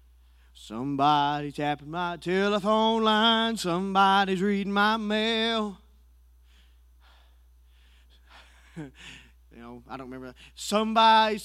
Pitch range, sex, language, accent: 130-220 Hz, male, English, American